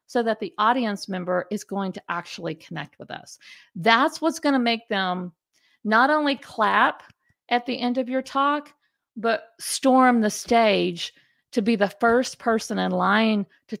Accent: American